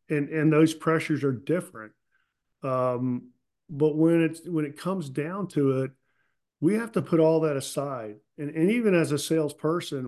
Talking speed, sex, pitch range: 175 wpm, male, 130-155 Hz